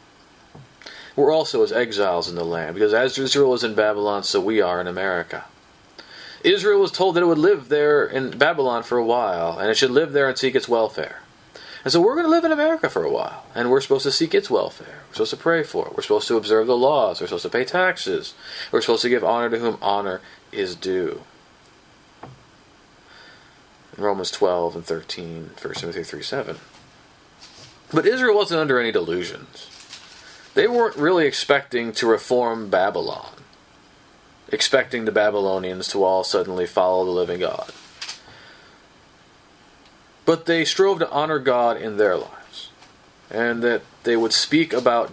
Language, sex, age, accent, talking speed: English, male, 30-49, American, 175 wpm